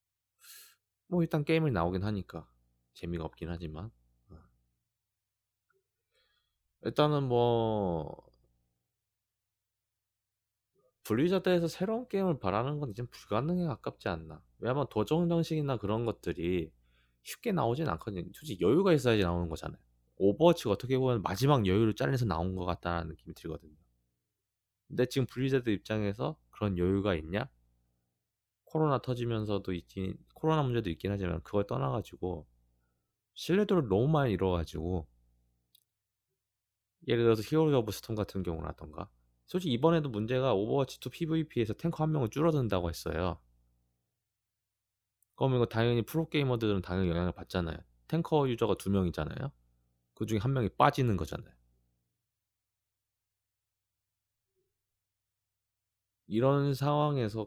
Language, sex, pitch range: Korean, male, 85-125 Hz